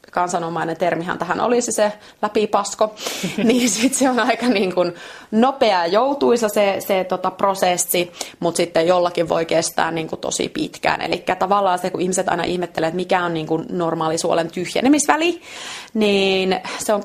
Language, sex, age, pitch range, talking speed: Finnish, female, 30-49, 175-210 Hz, 155 wpm